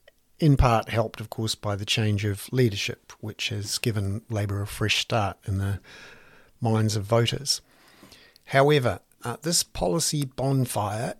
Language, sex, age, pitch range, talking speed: English, male, 50-69, 110-140 Hz, 145 wpm